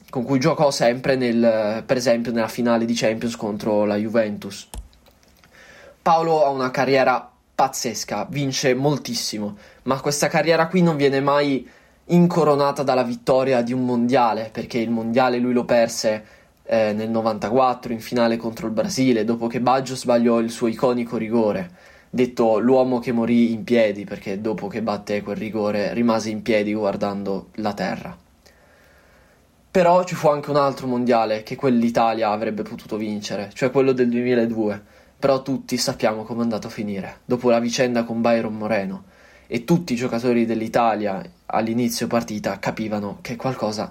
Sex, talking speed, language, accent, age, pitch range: male, 155 wpm, Italian, native, 20-39, 115-135 Hz